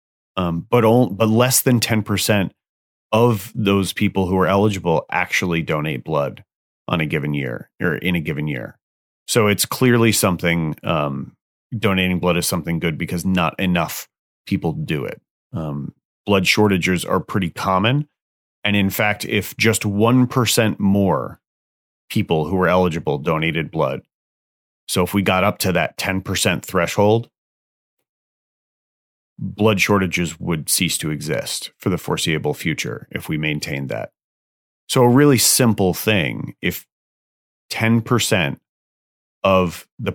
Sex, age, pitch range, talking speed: male, 30-49, 85-110 Hz, 135 wpm